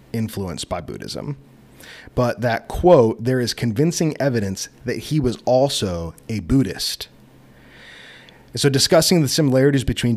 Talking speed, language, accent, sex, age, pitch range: 125 wpm, English, American, male, 30-49, 105-135 Hz